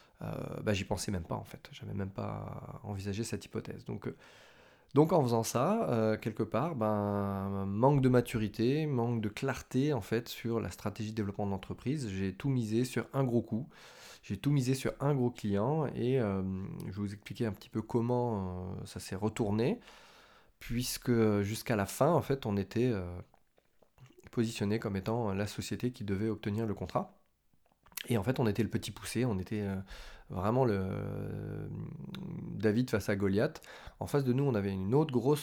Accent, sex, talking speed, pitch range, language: French, male, 185 wpm, 100-125 Hz, French